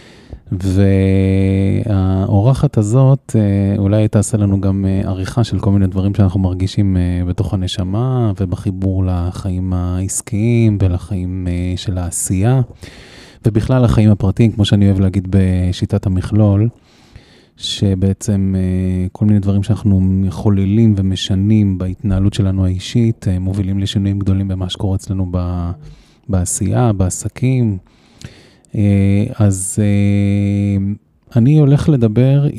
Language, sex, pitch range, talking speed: Hebrew, male, 95-110 Hz, 100 wpm